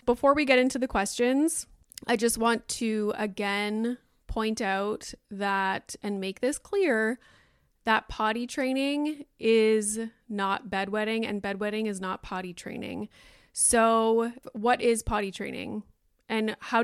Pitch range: 205-245 Hz